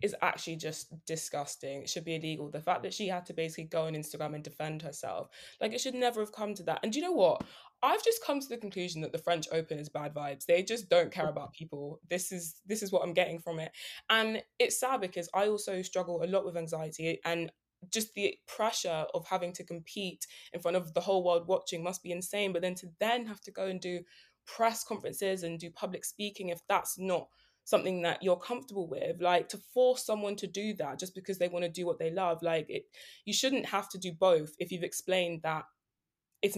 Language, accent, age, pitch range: English, British, 20-39, 165-200 Hz